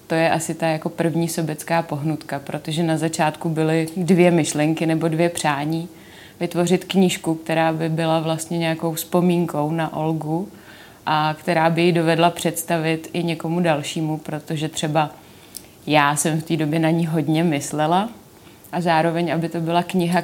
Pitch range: 160-175 Hz